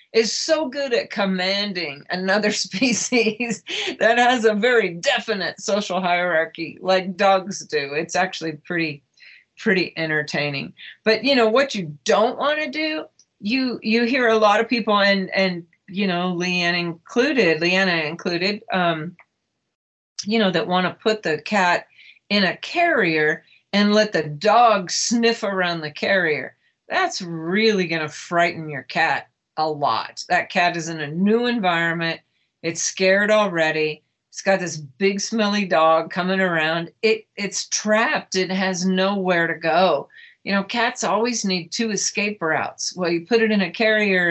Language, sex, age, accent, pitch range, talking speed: English, female, 40-59, American, 165-220 Hz, 155 wpm